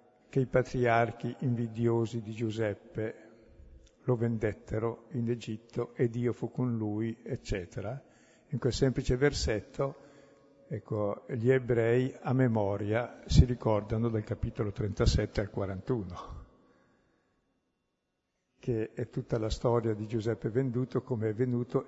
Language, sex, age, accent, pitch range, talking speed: Italian, male, 60-79, native, 110-130 Hz, 120 wpm